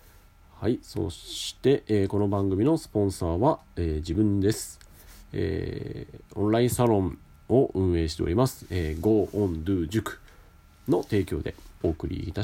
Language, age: Japanese, 40-59